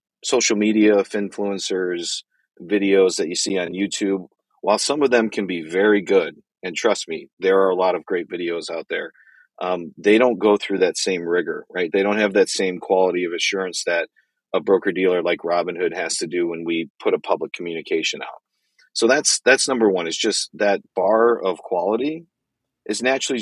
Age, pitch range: 40-59, 90-110 Hz